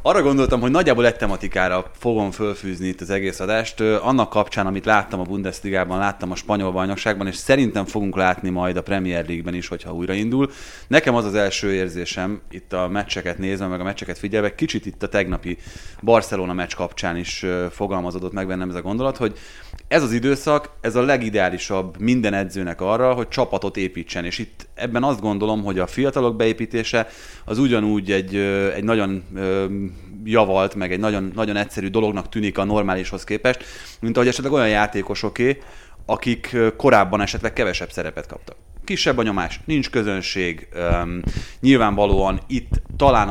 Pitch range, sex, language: 95-115 Hz, male, Hungarian